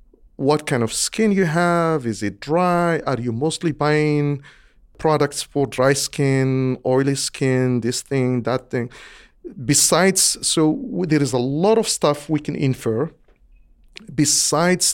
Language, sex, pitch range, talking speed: English, male, 120-150 Hz, 140 wpm